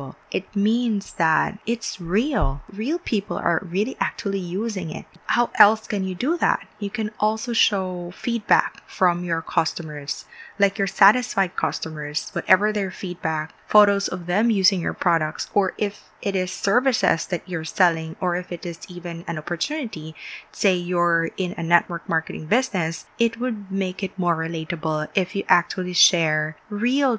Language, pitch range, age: English, 170-215 Hz, 20-39